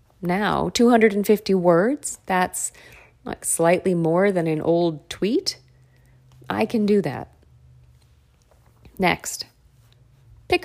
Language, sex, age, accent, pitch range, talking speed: English, female, 40-59, American, 165-220 Hz, 95 wpm